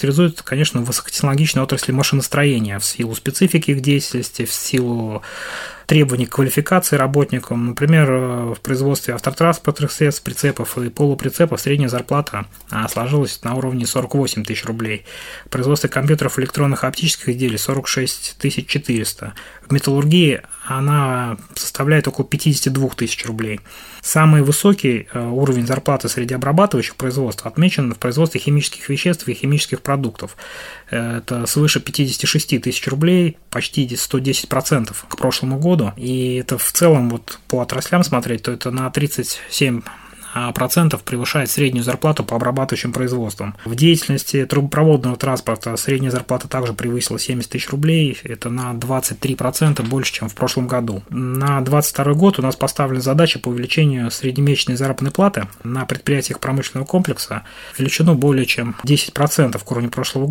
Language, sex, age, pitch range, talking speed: Russian, male, 20-39, 125-145 Hz, 135 wpm